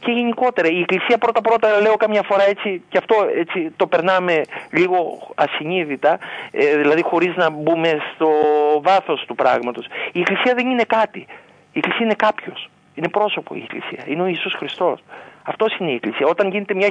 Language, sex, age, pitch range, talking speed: Greek, male, 50-69, 165-215 Hz, 170 wpm